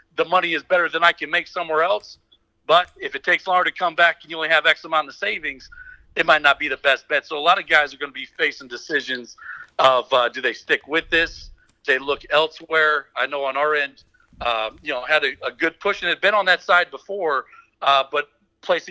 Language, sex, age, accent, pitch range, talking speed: English, male, 40-59, American, 130-170 Hz, 250 wpm